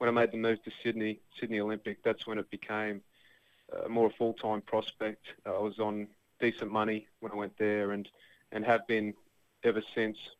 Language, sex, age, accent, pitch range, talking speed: English, male, 20-39, Australian, 105-115 Hz, 195 wpm